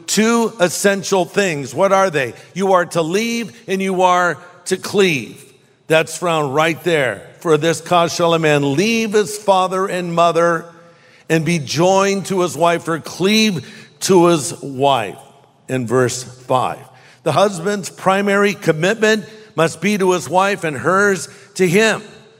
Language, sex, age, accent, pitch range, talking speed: English, male, 50-69, American, 155-190 Hz, 155 wpm